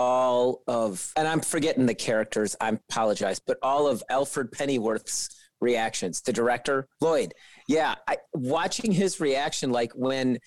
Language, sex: English, male